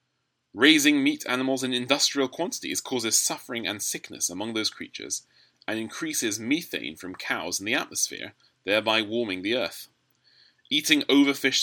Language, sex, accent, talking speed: English, male, British, 140 wpm